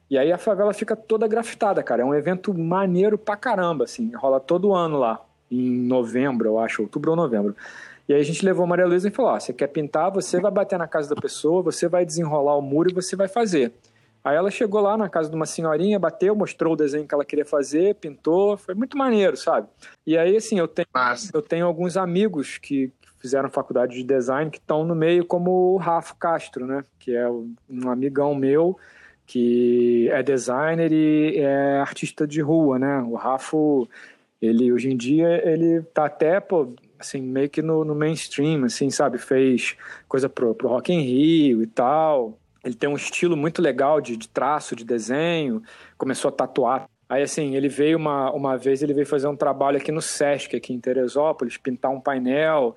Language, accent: Portuguese, Brazilian